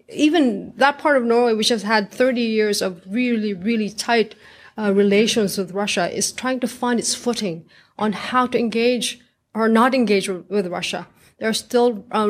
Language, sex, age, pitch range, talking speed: English, female, 30-49, 205-235 Hz, 180 wpm